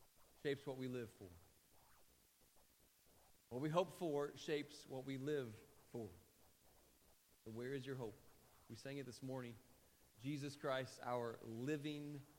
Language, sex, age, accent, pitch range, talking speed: English, male, 30-49, American, 120-150 Hz, 135 wpm